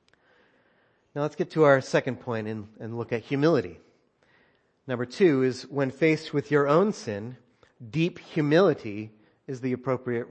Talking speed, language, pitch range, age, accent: 150 wpm, English, 125-180 Hz, 40-59, American